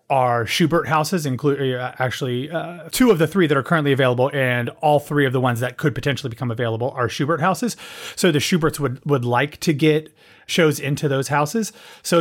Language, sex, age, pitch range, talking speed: English, male, 30-49, 130-170 Hz, 200 wpm